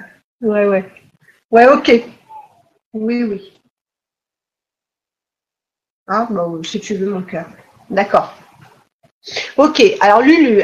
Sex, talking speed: female, 95 wpm